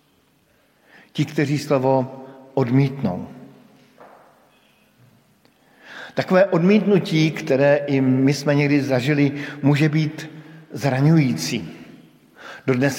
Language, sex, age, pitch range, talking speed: Slovak, male, 50-69, 115-140 Hz, 75 wpm